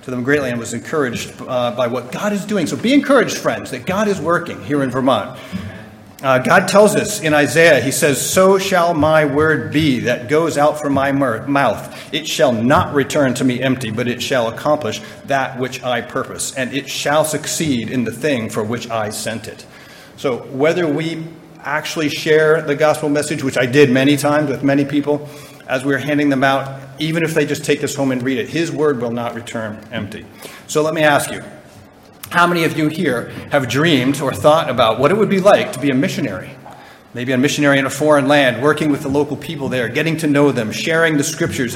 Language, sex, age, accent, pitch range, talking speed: English, male, 40-59, American, 130-155 Hz, 215 wpm